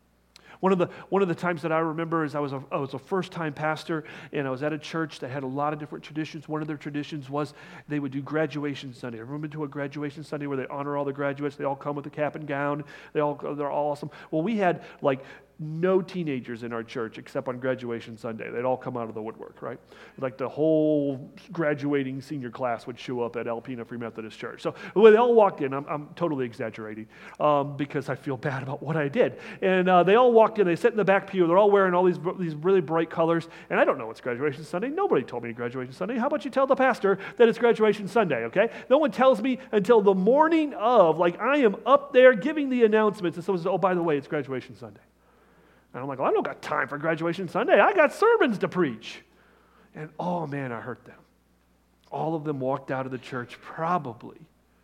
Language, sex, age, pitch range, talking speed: English, male, 40-59, 130-190 Hz, 245 wpm